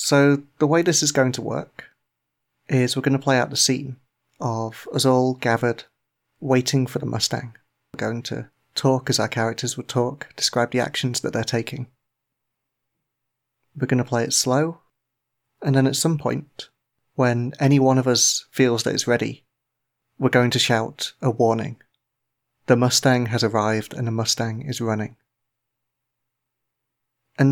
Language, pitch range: English, 120-135 Hz